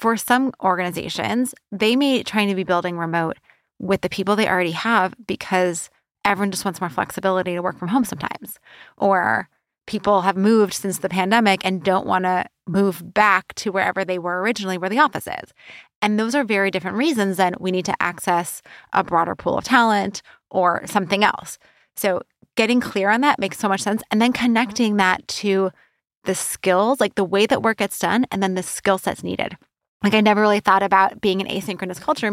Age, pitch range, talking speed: 20-39, 185-225 Hz, 200 wpm